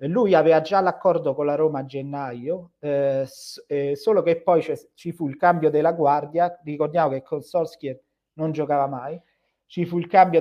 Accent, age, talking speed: native, 40-59, 185 wpm